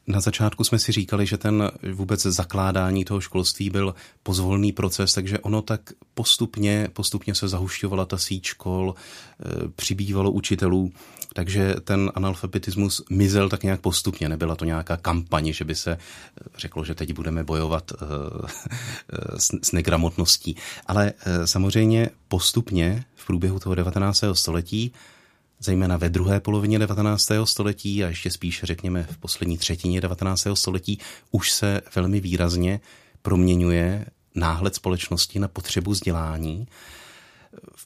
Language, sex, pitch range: Czech, male, 85-100 Hz